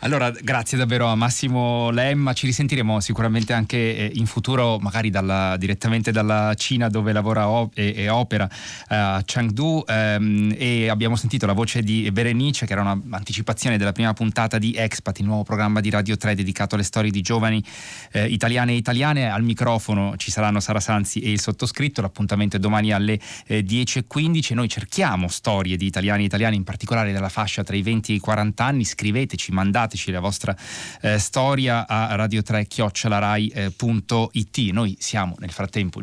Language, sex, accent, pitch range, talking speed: Italian, male, native, 100-115 Hz, 175 wpm